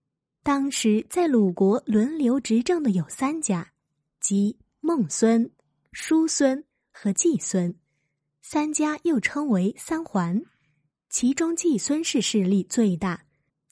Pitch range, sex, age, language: 185-260 Hz, female, 20-39, Chinese